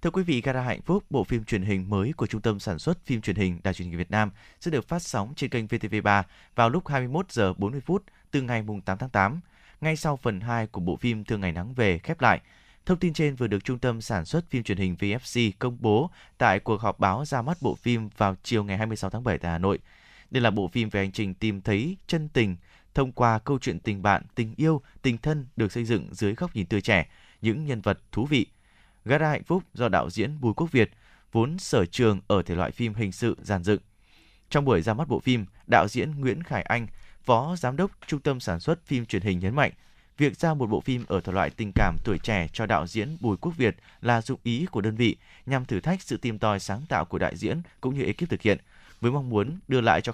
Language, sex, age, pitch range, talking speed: Vietnamese, male, 20-39, 100-130 Hz, 250 wpm